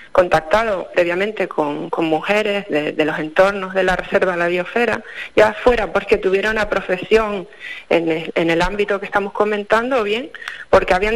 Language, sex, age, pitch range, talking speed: Spanish, female, 40-59, 175-205 Hz, 175 wpm